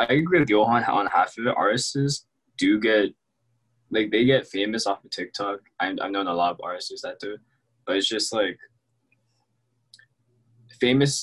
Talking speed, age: 175 wpm, 20-39